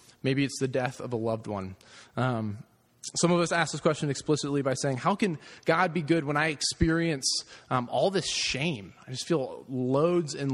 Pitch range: 125-165 Hz